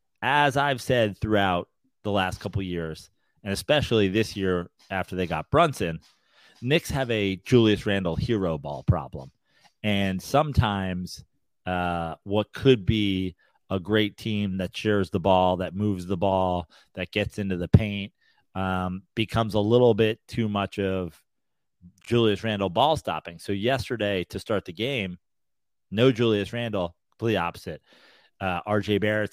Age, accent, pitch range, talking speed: 30-49, American, 95-110 Hz, 150 wpm